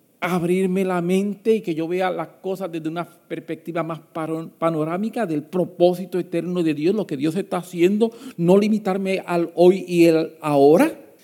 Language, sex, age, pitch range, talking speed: English, male, 50-69, 155-225 Hz, 165 wpm